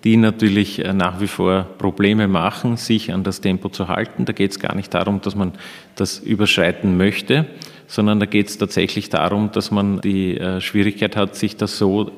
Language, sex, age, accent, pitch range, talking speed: German, male, 40-59, Austrian, 95-110 Hz, 185 wpm